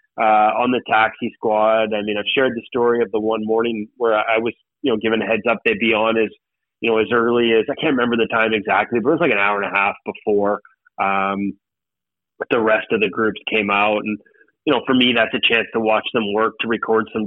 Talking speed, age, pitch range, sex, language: 250 wpm, 30-49, 110-140 Hz, male, English